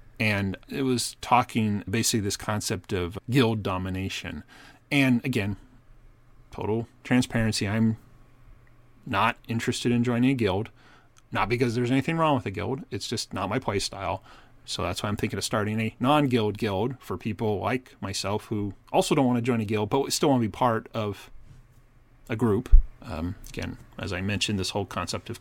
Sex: male